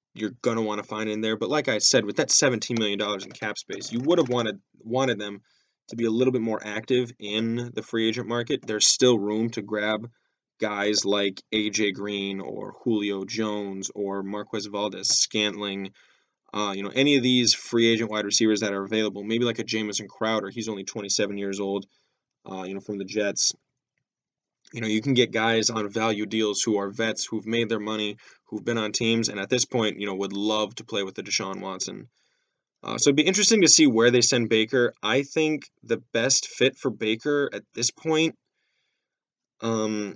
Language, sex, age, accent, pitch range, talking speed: English, male, 10-29, American, 105-120 Hz, 210 wpm